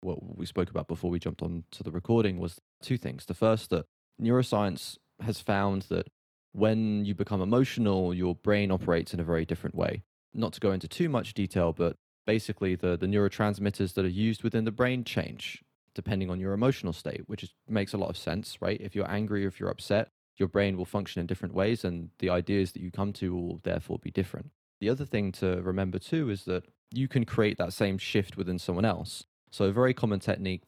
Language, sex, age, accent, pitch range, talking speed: English, male, 20-39, British, 90-110 Hz, 215 wpm